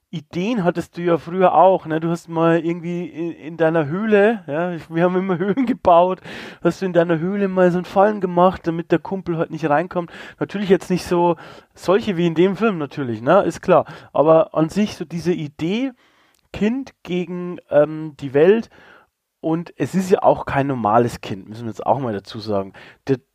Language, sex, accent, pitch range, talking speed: German, male, German, 150-190 Hz, 200 wpm